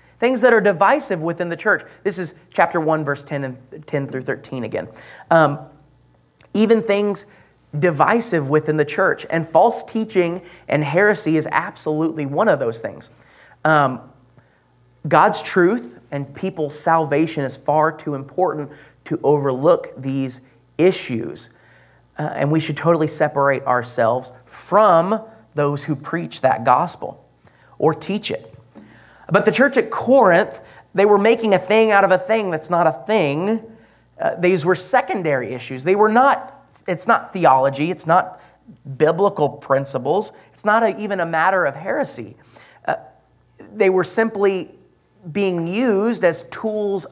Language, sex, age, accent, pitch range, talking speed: English, male, 30-49, American, 140-190 Hz, 145 wpm